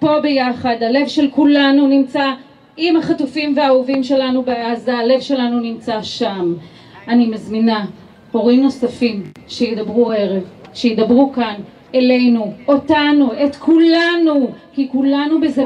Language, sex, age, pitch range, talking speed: Hebrew, female, 30-49, 235-295 Hz, 115 wpm